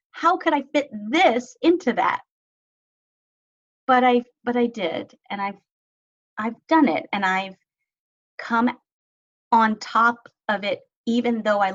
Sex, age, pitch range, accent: female, 30-49, 195-255 Hz, American